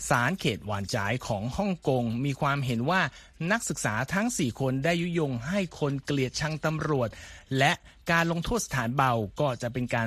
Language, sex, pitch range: Thai, male, 115-155 Hz